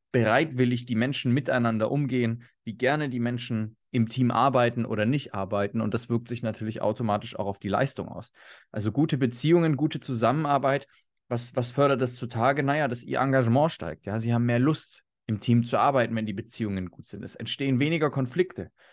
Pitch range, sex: 110-135 Hz, male